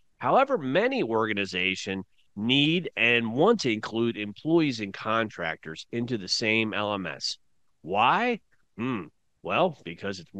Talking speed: 115 wpm